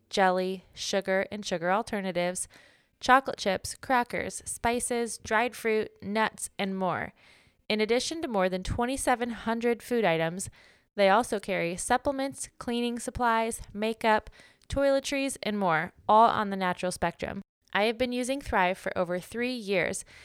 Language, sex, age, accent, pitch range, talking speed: English, female, 20-39, American, 180-225 Hz, 135 wpm